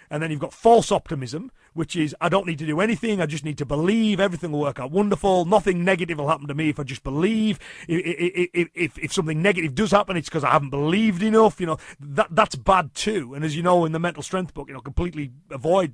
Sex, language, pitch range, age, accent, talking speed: male, English, 150-195 Hz, 30-49, British, 250 wpm